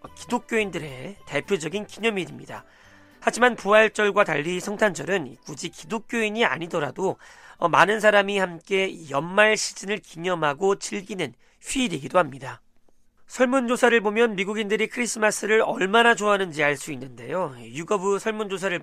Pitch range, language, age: 150-215 Hz, Korean, 40-59